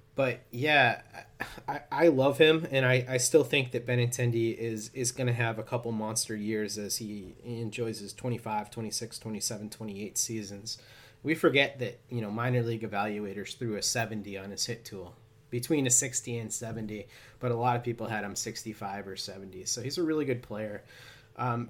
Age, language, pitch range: 30-49, English, 110-125 Hz